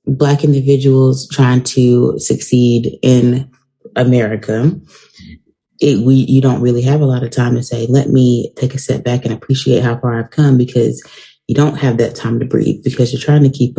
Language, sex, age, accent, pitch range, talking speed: English, female, 20-39, American, 120-135 Hz, 190 wpm